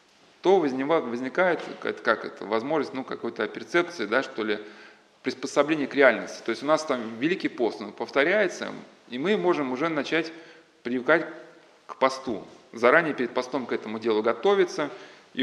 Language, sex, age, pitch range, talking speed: Russian, male, 20-39, 125-160 Hz, 150 wpm